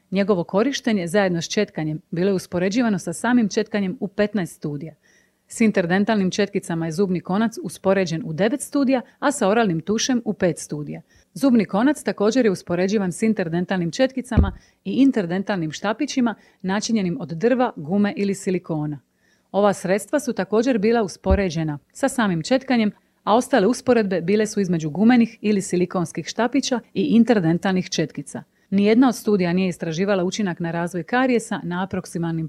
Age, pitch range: 40-59, 175-225 Hz